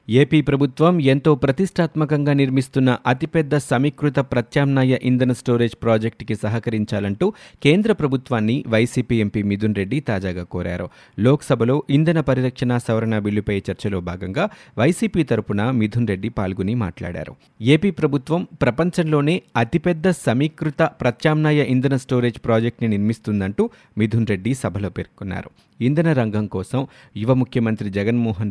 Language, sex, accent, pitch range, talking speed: Telugu, male, native, 110-145 Hz, 115 wpm